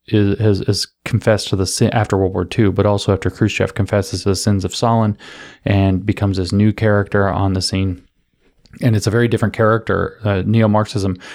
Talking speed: 190 wpm